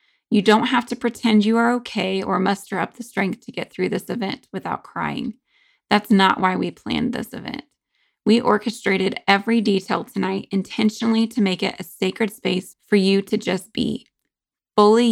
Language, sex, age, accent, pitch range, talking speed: English, female, 20-39, American, 190-235 Hz, 180 wpm